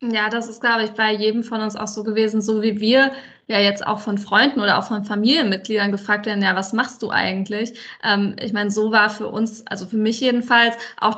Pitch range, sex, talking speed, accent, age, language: 200-235 Hz, female, 230 wpm, German, 20-39, German